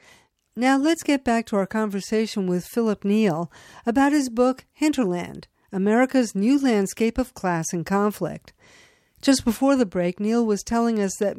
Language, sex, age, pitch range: English, female, 50-69, 190-255 Hz